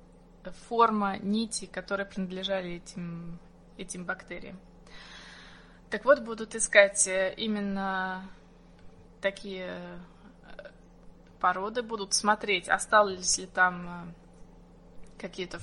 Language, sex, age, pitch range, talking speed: Russian, female, 20-39, 185-210 Hz, 75 wpm